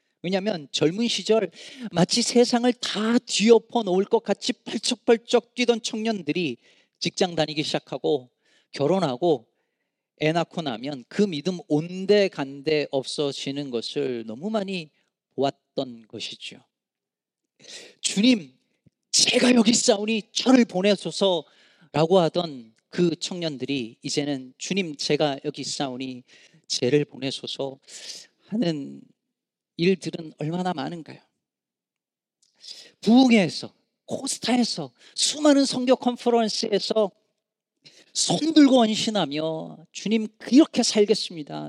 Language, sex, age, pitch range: Korean, male, 40-59, 155-230 Hz